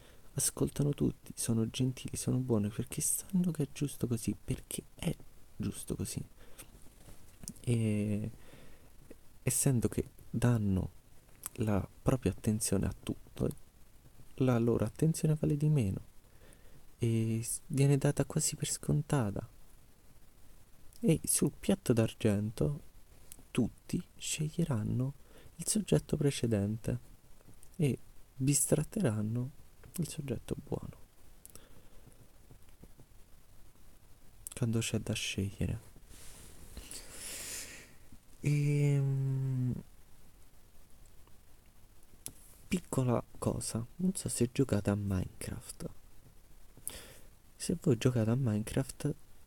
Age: 30-49